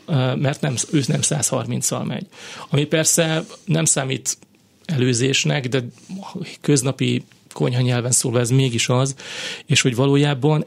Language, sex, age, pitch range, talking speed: Hungarian, male, 30-49, 125-155 Hz, 130 wpm